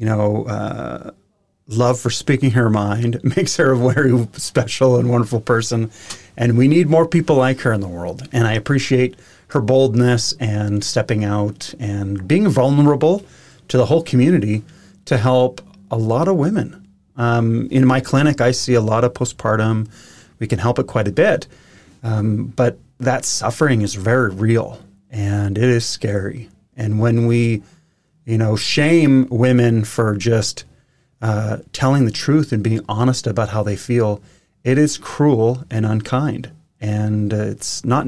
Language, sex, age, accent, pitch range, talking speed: English, male, 30-49, American, 105-130 Hz, 165 wpm